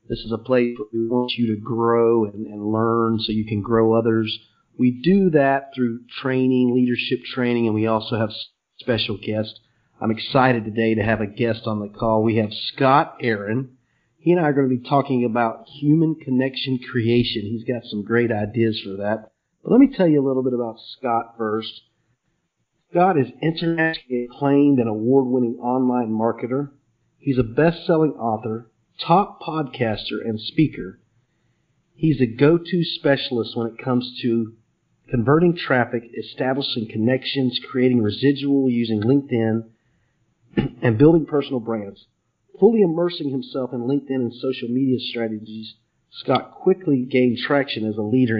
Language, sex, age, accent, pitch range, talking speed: English, male, 40-59, American, 115-135 Hz, 155 wpm